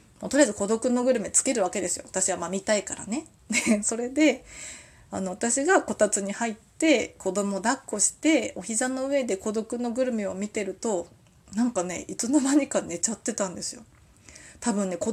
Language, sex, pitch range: Japanese, female, 200-280 Hz